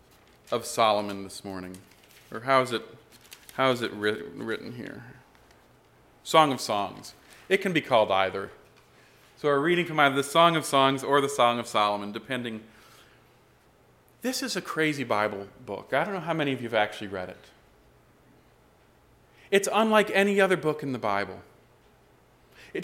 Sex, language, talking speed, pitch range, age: male, English, 165 wpm, 125-195 Hz, 40-59